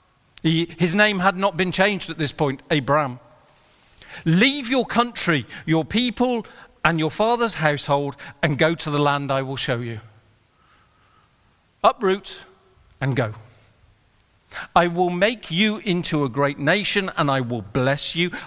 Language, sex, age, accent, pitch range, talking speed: English, male, 40-59, British, 135-200 Hz, 145 wpm